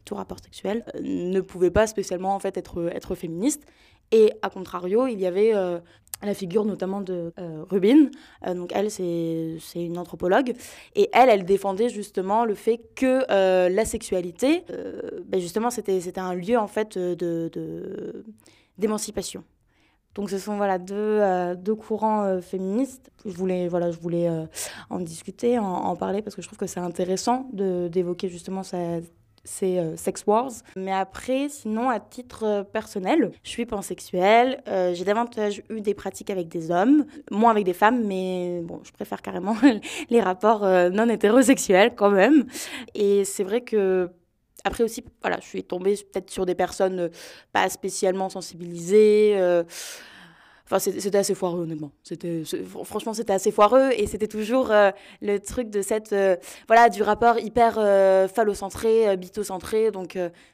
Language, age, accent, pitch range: French, 20-39, French, 185-235 Hz